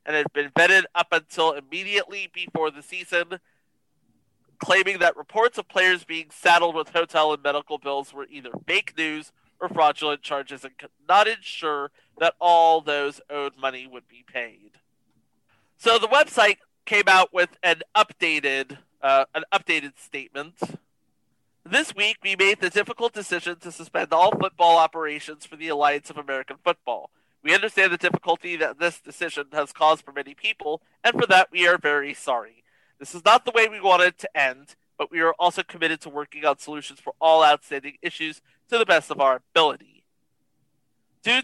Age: 40-59